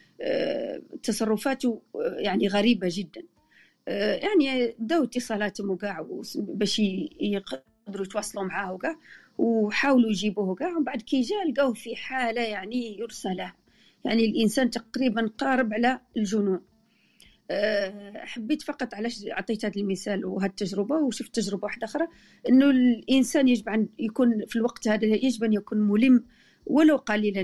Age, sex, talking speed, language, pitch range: 40-59, female, 115 wpm, Arabic, 210-255 Hz